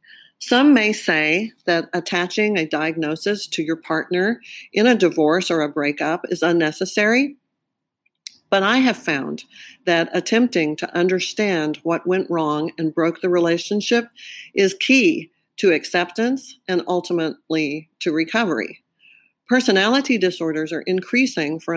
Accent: American